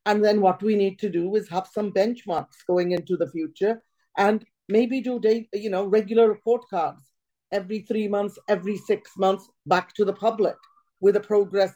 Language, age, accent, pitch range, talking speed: English, 50-69, Indian, 190-240 Hz, 185 wpm